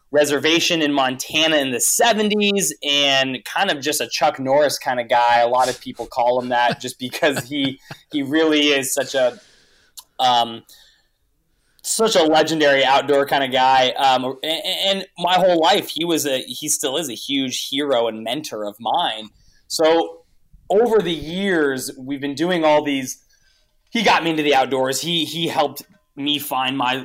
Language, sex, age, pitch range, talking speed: English, male, 20-39, 125-165 Hz, 175 wpm